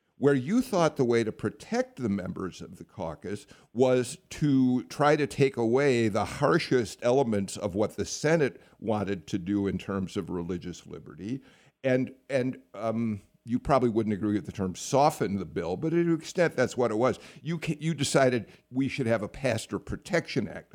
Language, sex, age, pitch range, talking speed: English, male, 50-69, 110-165 Hz, 185 wpm